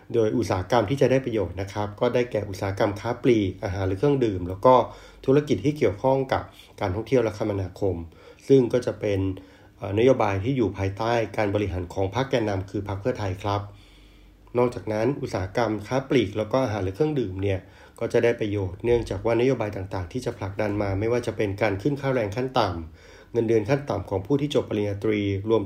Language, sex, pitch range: Thai, male, 100-120 Hz